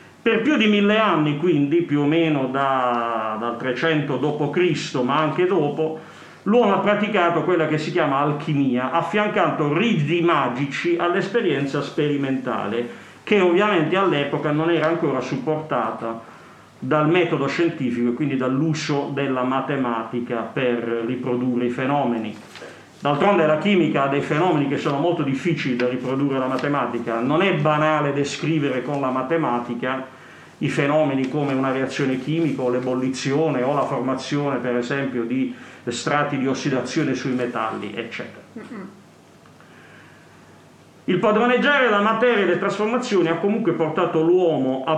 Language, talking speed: Italian, 135 wpm